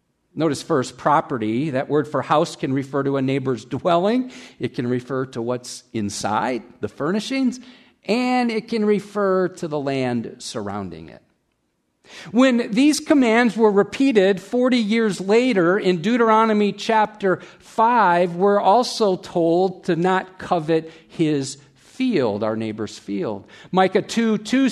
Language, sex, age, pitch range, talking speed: English, male, 50-69, 150-220 Hz, 135 wpm